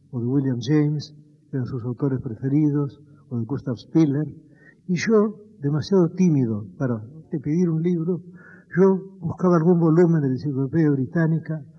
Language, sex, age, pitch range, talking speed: Spanish, male, 60-79, 135-170 Hz, 155 wpm